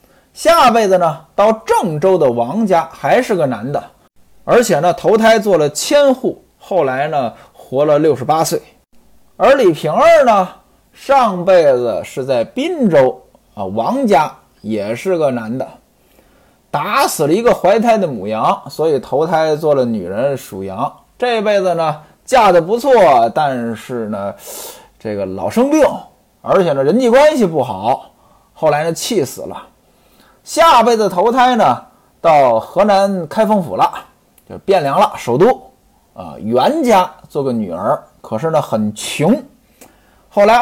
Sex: male